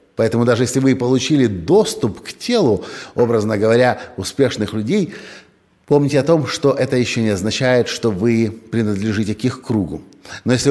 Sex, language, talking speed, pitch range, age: male, Russian, 155 wpm, 105-145 Hz, 50-69